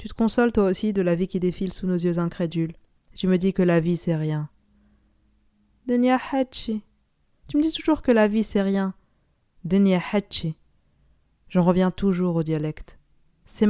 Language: French